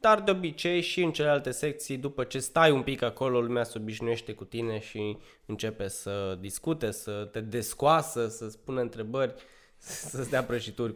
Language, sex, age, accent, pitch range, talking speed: Romanian, male, 20-39, native, 110-140 Hz, 175 wpm